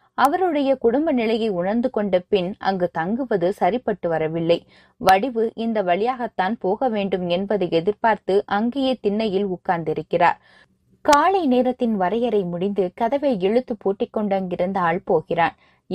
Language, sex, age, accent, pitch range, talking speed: Tamil, female, 20-39, native, 180-245 Hz, 110 wpm